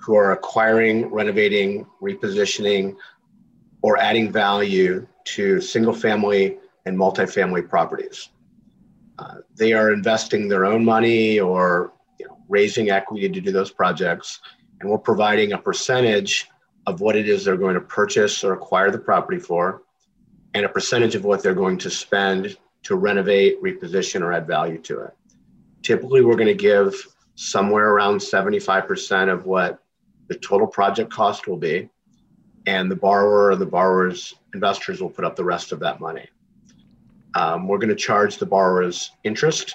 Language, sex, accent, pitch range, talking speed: English, male, American, 95-130 Hz, 150 wpm